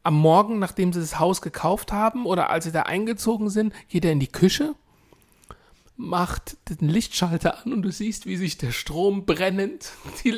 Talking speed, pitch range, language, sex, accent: 185 wpm, 175-240 Hz, German, male, German